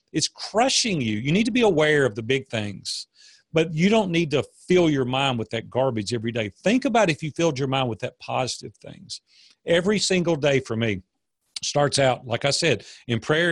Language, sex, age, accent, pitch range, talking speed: English, male, 40-59, American, 130-165 Hz, 215 wpm